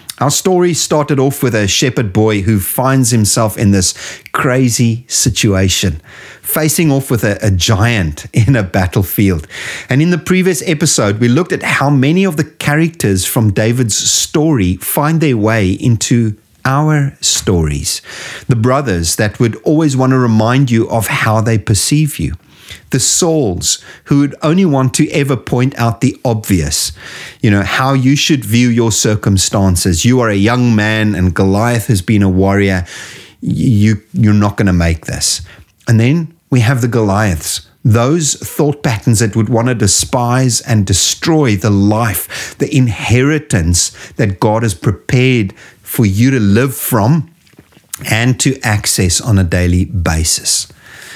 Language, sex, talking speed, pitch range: English, male, 155 wpm, 100-135 Hz